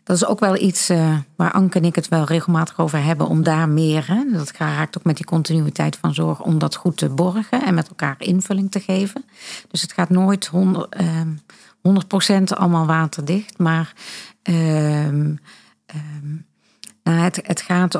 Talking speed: 175 wpm